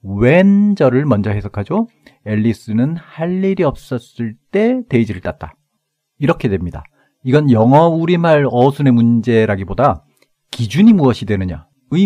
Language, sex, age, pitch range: Korean, male, 40-59, 110-180 Hz